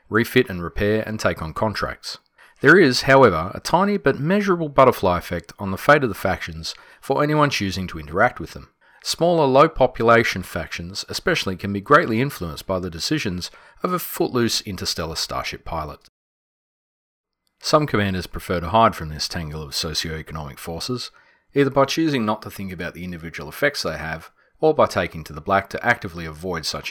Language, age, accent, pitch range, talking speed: English, 40-59, Australian, 80-115 Hz, 175 wpm